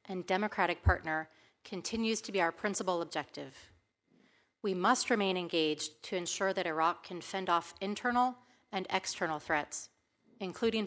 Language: English